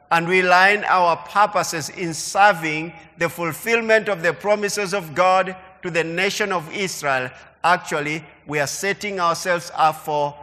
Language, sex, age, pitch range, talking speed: English, male, 50-69, 145-185 Hz, 150 wpm